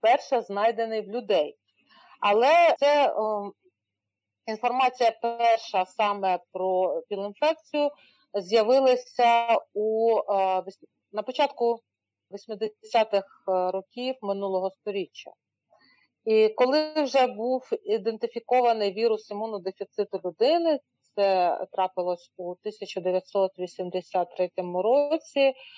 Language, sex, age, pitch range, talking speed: Ukrainian, female, 40-59, 195-250 Hz, 75 wpm